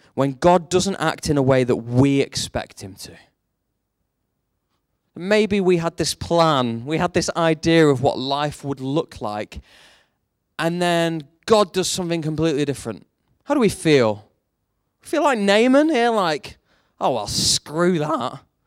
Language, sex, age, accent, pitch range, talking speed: English, male, 20-39, British, 145-220 Hz, 155 wpm